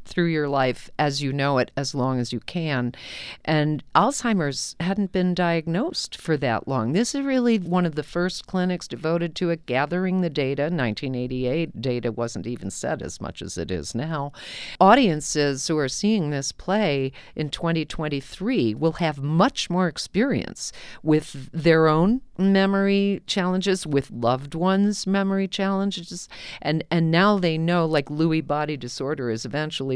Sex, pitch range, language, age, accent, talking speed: female, 135-175 Hz, English, 50-69, American, 160 wpm